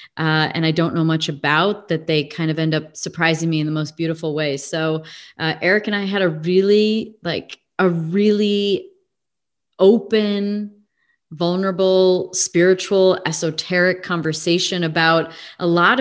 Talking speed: 145 wpm